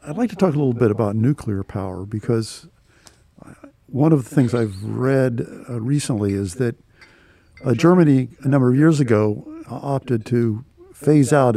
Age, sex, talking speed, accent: 50-69, male, 160 wpm, American